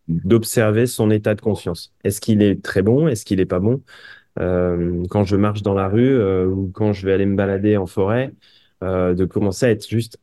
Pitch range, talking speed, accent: 95-115 Hz, 225 wpm, French